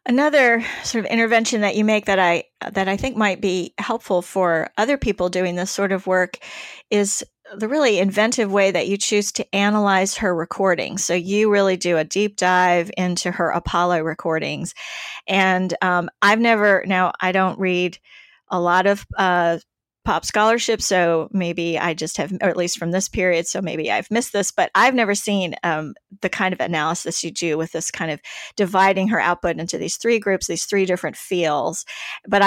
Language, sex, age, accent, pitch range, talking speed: English, female, 40-59, American, 175-215 Hz, 190 wpm